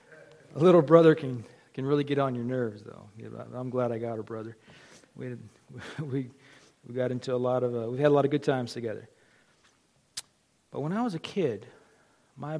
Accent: American